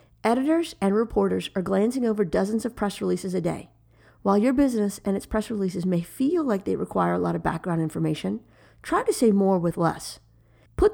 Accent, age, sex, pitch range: American, 40-59, female, 175-235 Hz